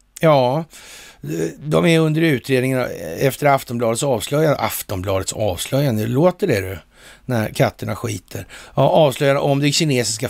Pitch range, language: 115-150 Hz, Swedish